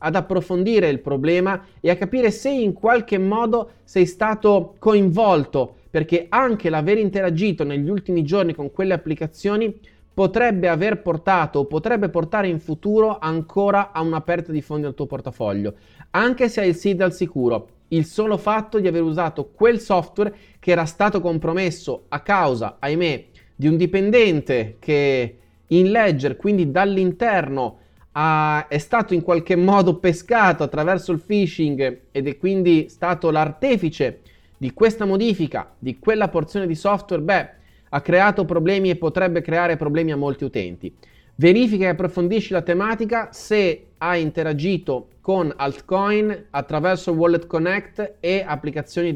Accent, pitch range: native, 155-200 Hz